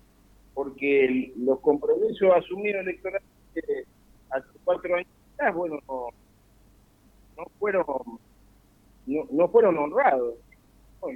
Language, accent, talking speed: Spanish, Argentinian, 90 wpm